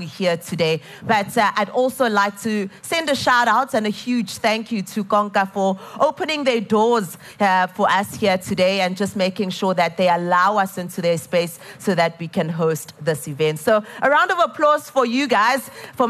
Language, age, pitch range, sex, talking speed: English, 30-49, 185-235 Hz, female, 205 wpm